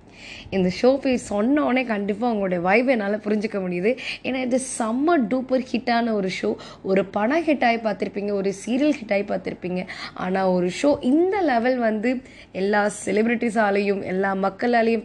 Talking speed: 50 wpm